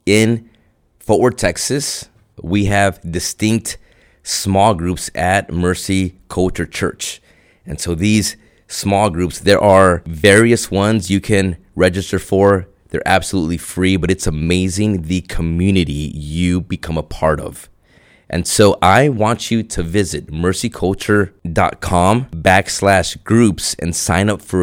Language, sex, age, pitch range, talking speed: English, male, 30-49, 85-105 Hz, 130 wpm